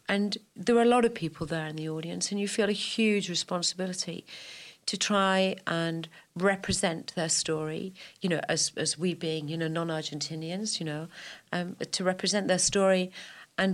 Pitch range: 170-200 Hz